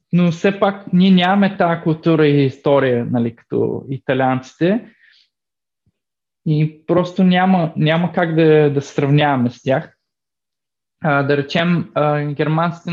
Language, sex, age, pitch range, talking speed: Bulgarian, male, 20-39, 135-175 Hz, 125 wpm